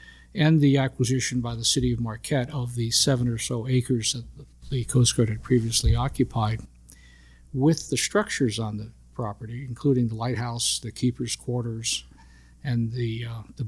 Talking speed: 160 wpm